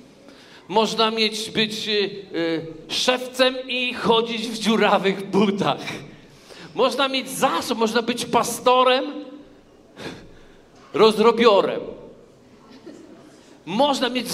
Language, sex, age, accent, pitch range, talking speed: Polish, male, 50-69, native, 220-250 Hz, 85 wpm